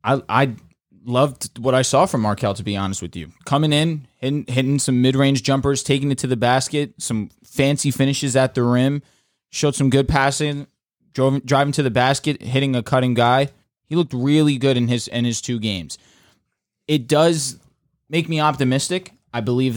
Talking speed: 185 wpm